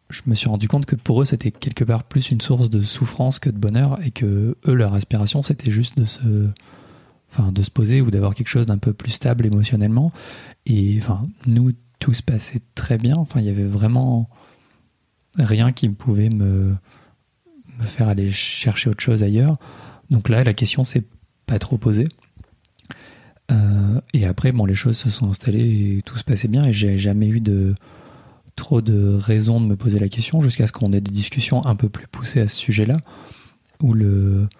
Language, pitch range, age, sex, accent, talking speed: French, 105-125 Hz, 30-49, male, French, 200 wpm